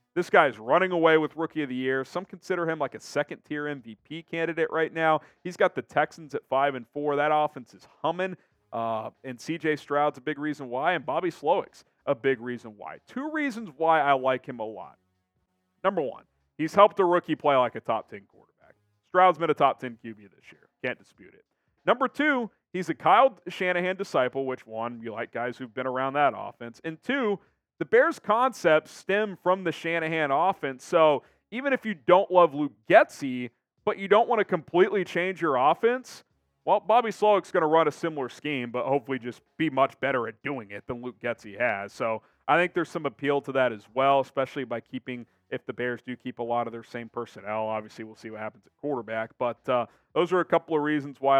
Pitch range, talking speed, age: 120-170 Hz, 210 wpm, 40-59